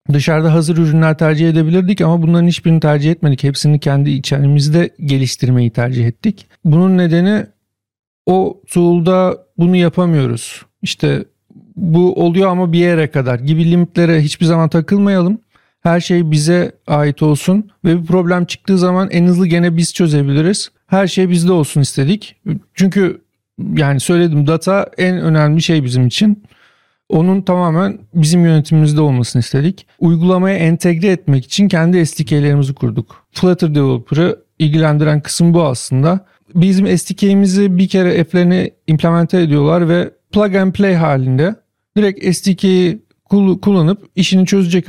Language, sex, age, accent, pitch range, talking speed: Turkish, male, 50-69, native, 150-185 Hz, 130 wpm